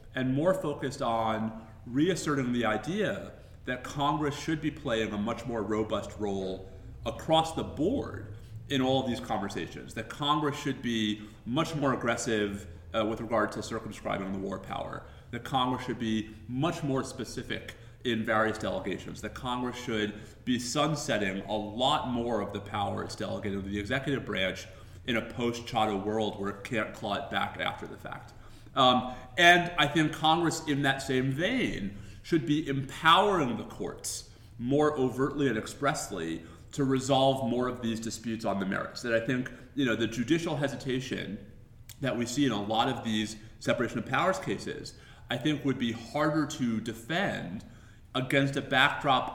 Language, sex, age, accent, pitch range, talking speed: English, male, 30-49, American, 110-135 Hz, 165 wpm